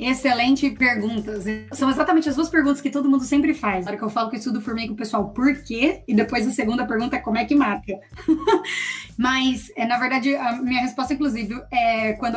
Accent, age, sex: Brazilian, 20-39, female